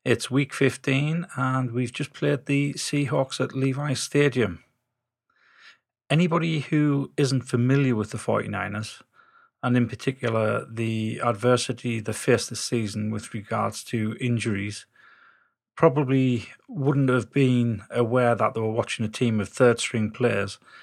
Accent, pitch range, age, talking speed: British, 115-135 Hz, 30-49, 135 wpm